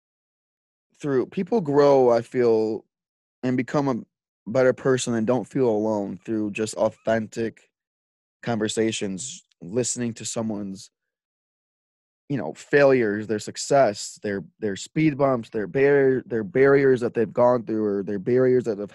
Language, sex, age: English, male, 20-39